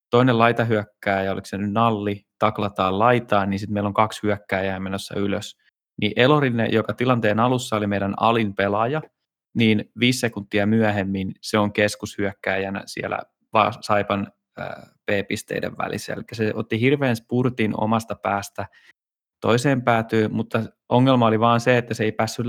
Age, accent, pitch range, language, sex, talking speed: 20-39, native, 100-115 Hz, Finnish, male, 145 wpm